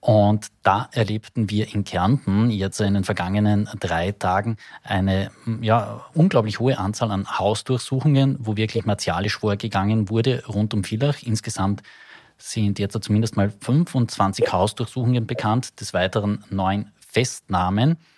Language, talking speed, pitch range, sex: German, 125 wpm, 100-120 Hz, male